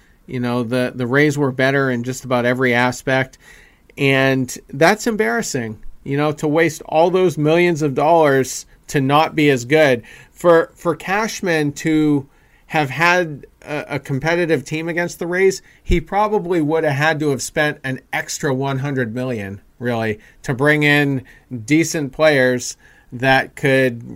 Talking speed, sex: 155 wpm, male